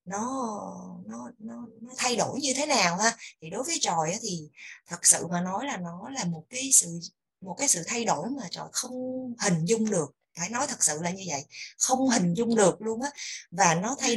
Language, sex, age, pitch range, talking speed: Vietnamese, female, 20-39, 185-265 Hz, 220 wpm